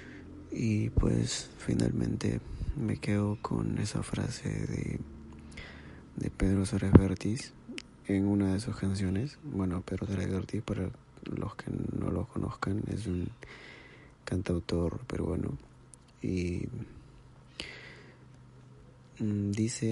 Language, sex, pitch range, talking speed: Spanish, male, 95-115 Hz, 105 wpm